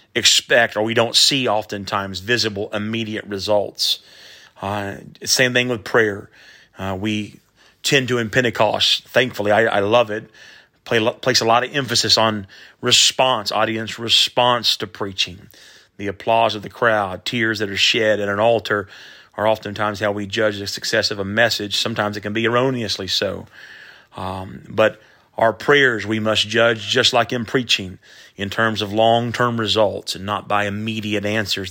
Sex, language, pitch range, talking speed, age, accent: male, English, 105-120 Hz, 160 wpm, 30-49, American